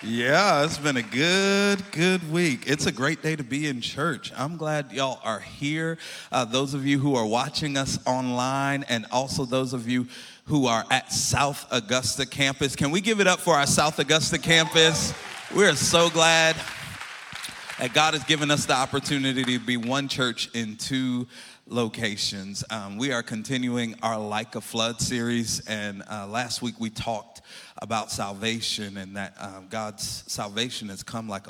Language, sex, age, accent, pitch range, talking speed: English, male, 40-59, American, 110-135 Hz, 175 wpm